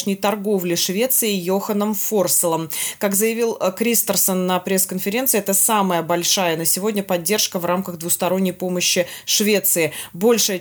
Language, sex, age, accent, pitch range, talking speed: Russian, female, 20-39, native, 175-205 Hz, 120 wpm